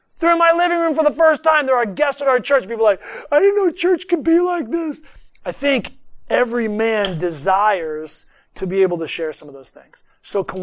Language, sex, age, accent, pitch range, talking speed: English, male, 30-49, American, 185-235 Hz, 235 wpm